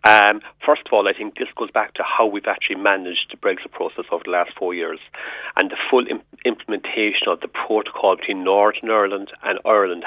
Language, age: English, 40-59